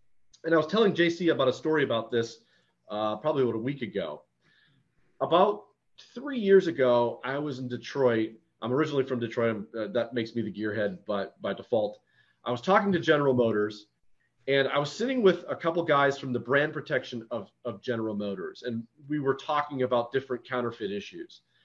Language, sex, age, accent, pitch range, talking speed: English, male, 30-49, American, 125-190 Hz, 185 wpm